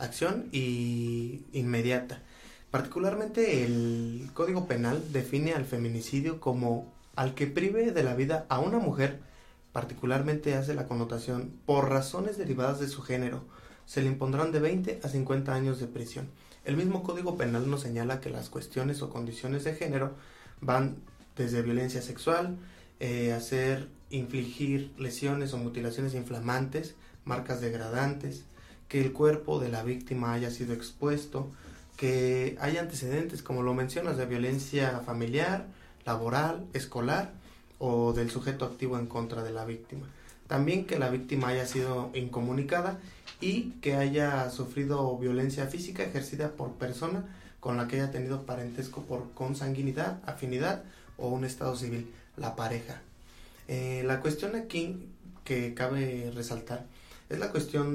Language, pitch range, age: Spanish, 125-145 Hz, 30-49